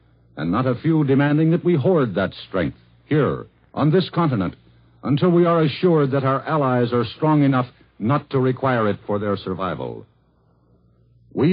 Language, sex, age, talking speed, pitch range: English, male, 60-79, 165 wpm, 95-150 Hz